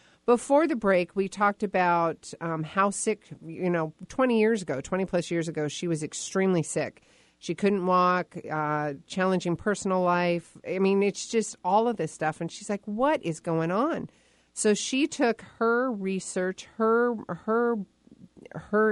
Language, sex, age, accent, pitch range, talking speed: English, female, 40-59, American, 160-200 Hz, 165 wpm